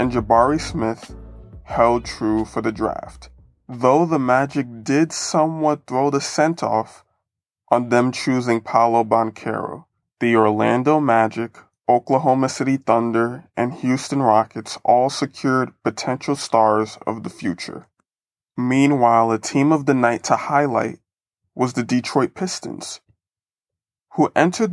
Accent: American